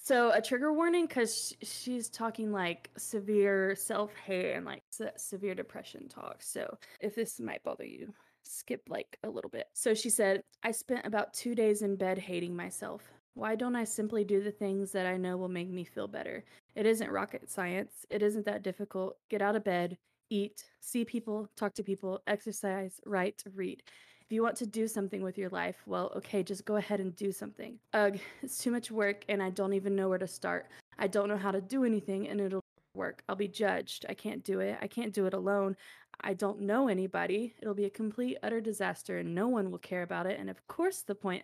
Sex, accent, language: female, American, English